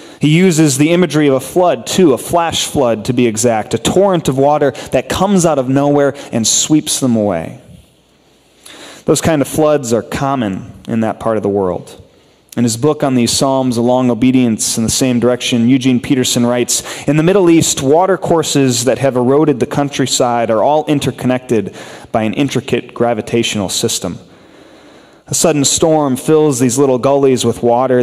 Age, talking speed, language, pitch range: 30-49, 175 wpm, English, 115-145 Hz